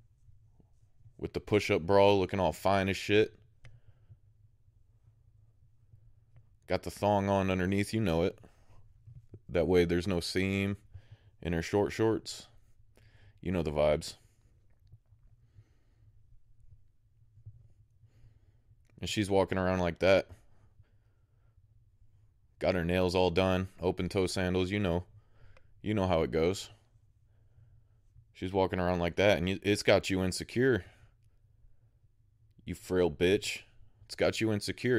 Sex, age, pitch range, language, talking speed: male, 20-39, 95-110 Hz, English, 115 wpm